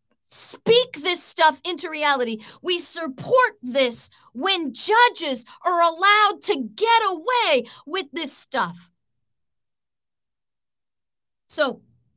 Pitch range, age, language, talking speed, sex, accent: 230-310 Hz, 40-59, English, 95 wpm, female, American